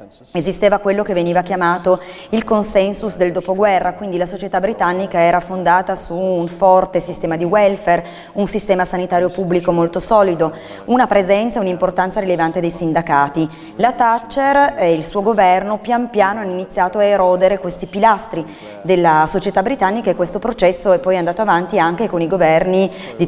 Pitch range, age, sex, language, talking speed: 170-200 Hz, 30-49, female, Italian, 160 wpm